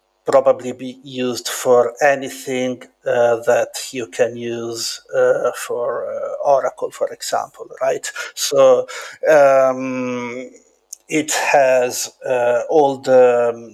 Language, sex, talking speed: English, male, 110 wpm